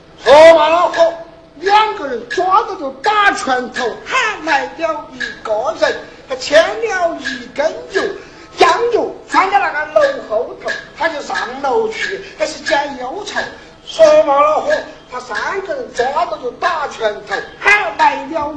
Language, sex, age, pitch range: Chinese, male, 50-69, 290-400 Hz